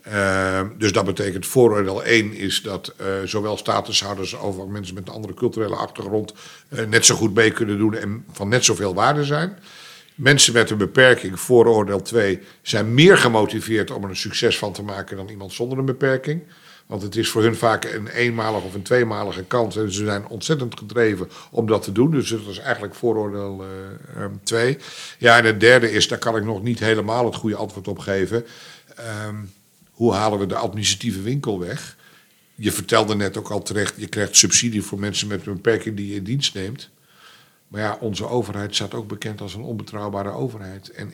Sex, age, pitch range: male, 60-79, 100-115 Hz